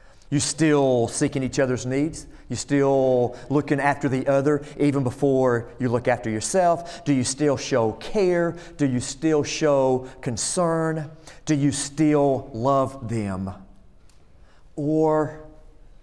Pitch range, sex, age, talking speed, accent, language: 115-145 Hz, male, 40-59, 125 wpm, American, English